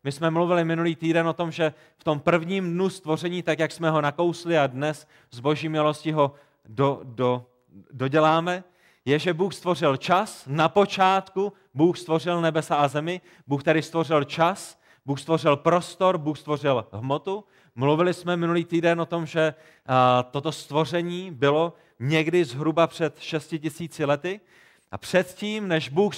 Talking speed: 160 wpm